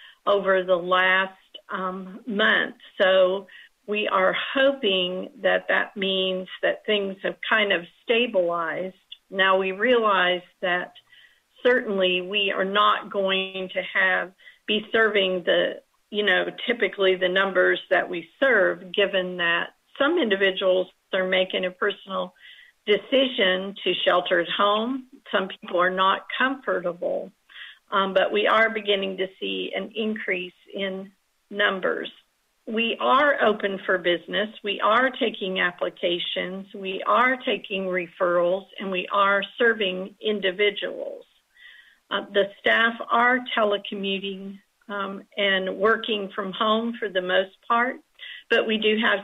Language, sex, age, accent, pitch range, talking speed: English, female, 50-69, American, 185-215 Hz, 130 wpm